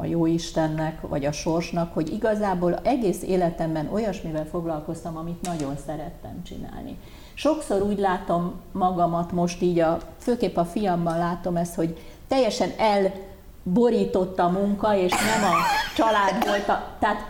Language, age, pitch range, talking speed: Hungarian, 50-69, 170-205 Hz, 135 wpm